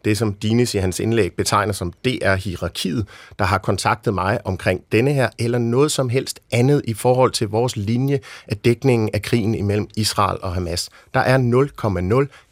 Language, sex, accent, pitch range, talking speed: Danish, male, native, 105-140 Hz, 185 wpm